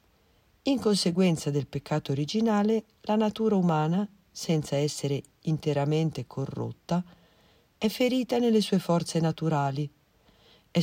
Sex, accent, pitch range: female, native, 140-195 Hz